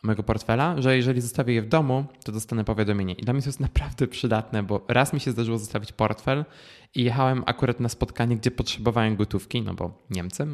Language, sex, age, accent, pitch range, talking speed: Polish, male, 20-39, native, 100-125 Hz, 205 wpm